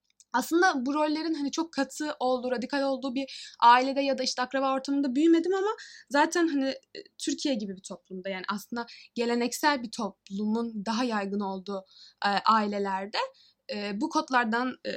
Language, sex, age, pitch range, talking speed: Turkish, female, 10-29, 235-315 Hz, 140 wpm